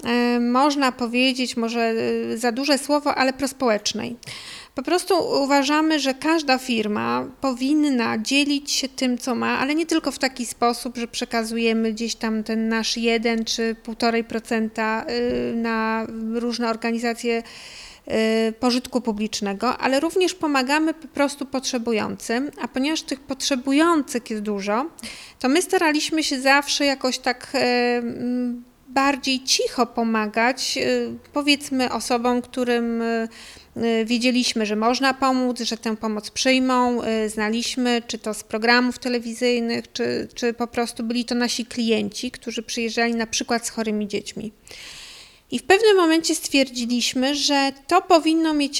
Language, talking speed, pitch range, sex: Polish, 125 wpm, 230-275 Hz, female